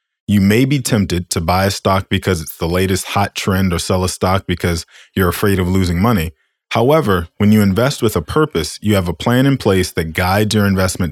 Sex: male